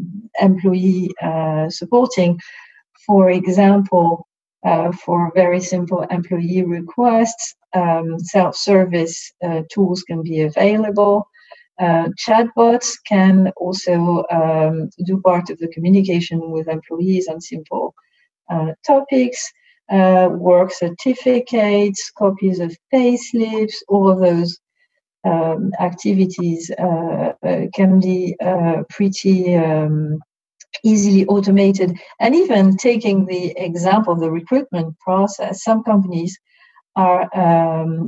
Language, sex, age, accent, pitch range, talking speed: English, female, 50-69, French, 175-210 Hz, 100 wpm